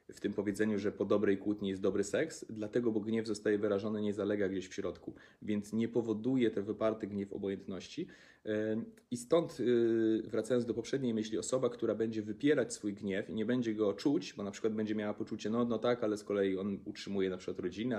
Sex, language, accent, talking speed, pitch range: male, Polish, native, 205 wpm, 100-120 Hz